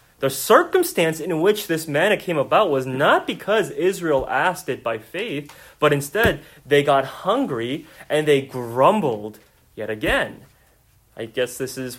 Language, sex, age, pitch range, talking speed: English, male, 30-49, 120-180 Hz, 150 wpm